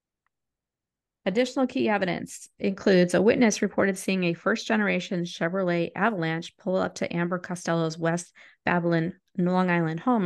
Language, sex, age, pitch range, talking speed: English, female, 30-49, 170-205 Hz, 130 wpm